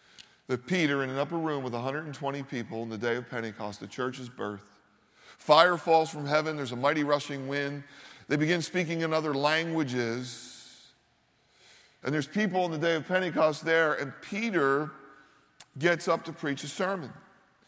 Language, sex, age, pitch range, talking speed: English, male, 40-59, 140-175 Hz, 165 wpm